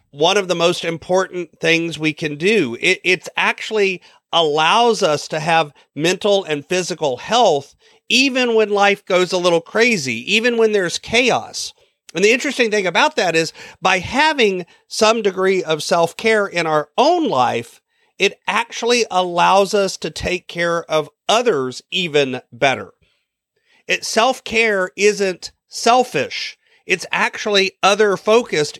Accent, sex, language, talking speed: American, male, English, 140 wpm